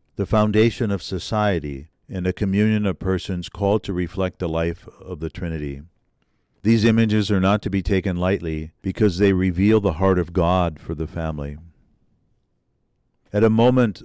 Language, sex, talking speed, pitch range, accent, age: English, male, 160 wpm, 90-105 Hz, American, 50-69